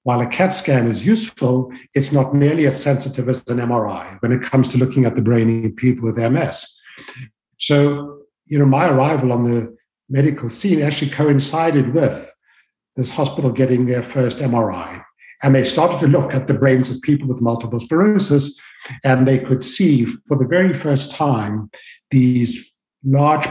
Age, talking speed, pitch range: 60-79, 175 wpm, 130-150 Hz